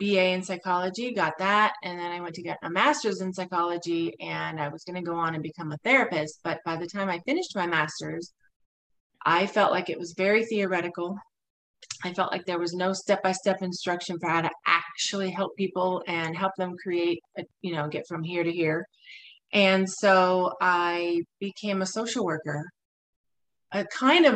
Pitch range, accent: 170-205 Hz, American